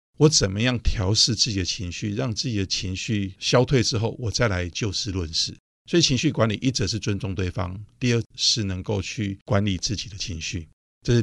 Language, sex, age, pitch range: Chinese, male, 50-69, 95-120 Hz